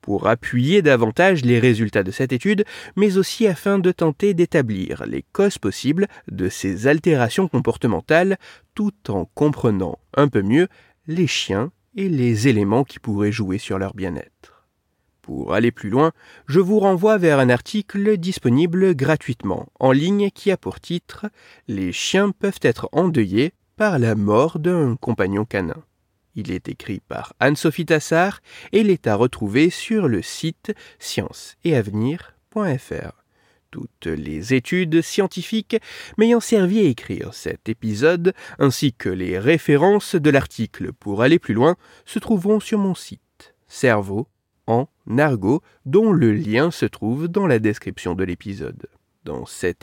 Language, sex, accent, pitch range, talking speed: French, male, French, 115-190 Hz, 145 wpm